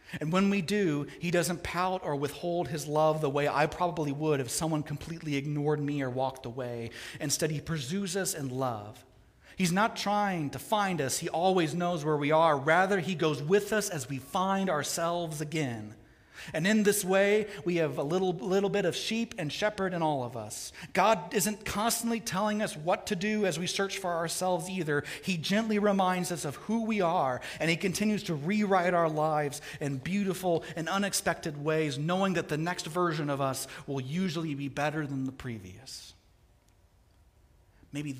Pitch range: 140-190 Hz